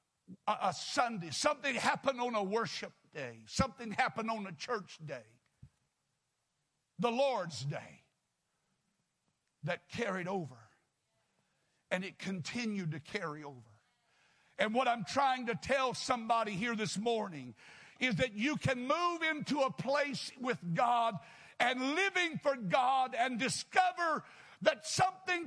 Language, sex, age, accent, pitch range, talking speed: English, male, 60-79, American, 170-275 Hz, 125 wpm